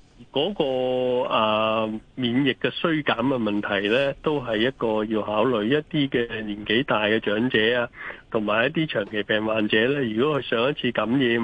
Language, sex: Chinese, male